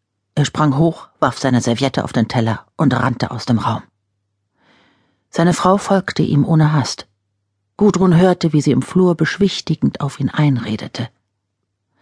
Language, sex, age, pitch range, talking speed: German, female, 50-69, 105-170 Hz, 150 wpm